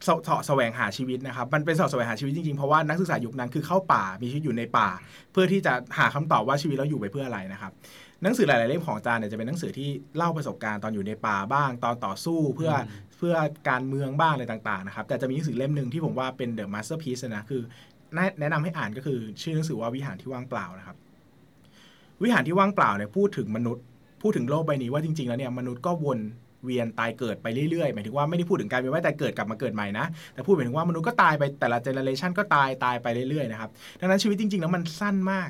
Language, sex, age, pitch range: Thai, male, 20-39, 125-170 Hz